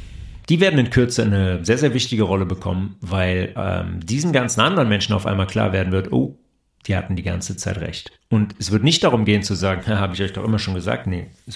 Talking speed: 235 wpm